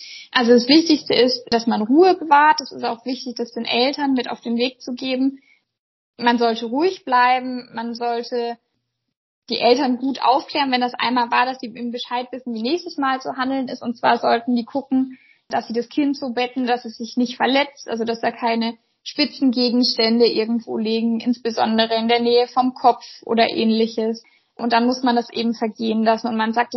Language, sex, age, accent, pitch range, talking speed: German, female, 20-39, German, 235-270 Hz, 195 wpm